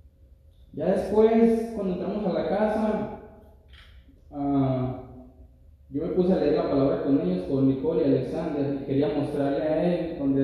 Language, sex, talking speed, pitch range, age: Spanish, male, 145 wpm, 110-165 Hz, 30-49